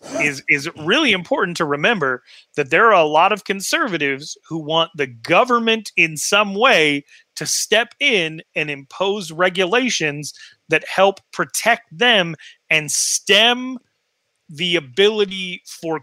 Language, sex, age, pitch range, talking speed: English, male, 30-49, 145-190 Hz, 130 wpm